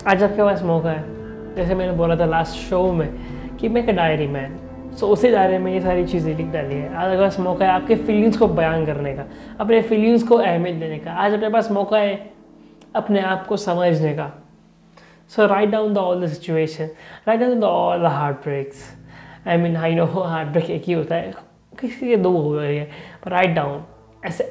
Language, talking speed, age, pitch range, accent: Hindi, 210 wpm, 20-39, 155-200 Hz, native